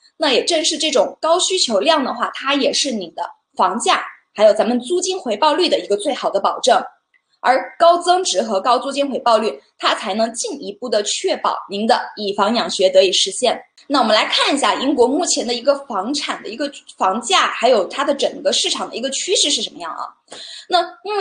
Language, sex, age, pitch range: Chinese, female, 20-39, 230-335 Hz